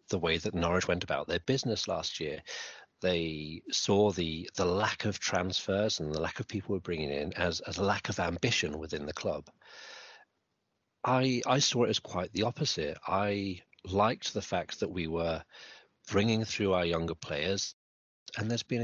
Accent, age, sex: British, 40-59, male